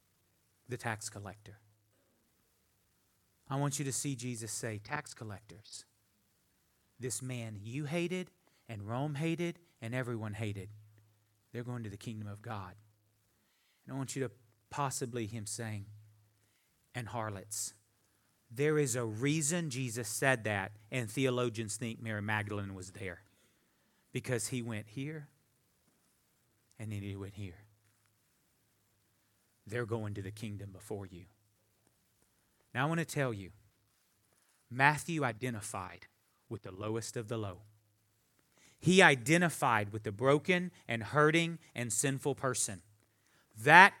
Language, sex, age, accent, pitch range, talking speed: English, male, 40-59, American, 105-145 Hz, 130 wpm